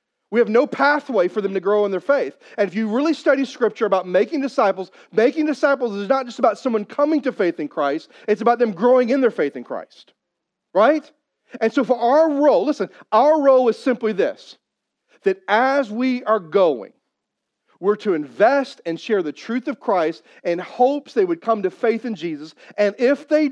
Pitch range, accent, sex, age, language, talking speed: 185-270 Hz, American, male, 40-59, English, 200 wpm